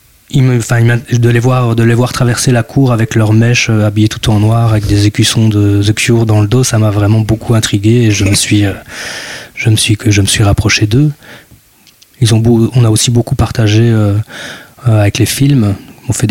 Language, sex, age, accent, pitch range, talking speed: French, male, 20-39, French, 105-120 Hz, 230 wpm